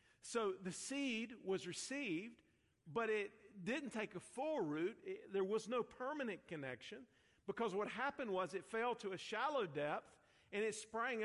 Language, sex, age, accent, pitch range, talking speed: English, male, 50-69, American, 155-210 Hz, 160 wpm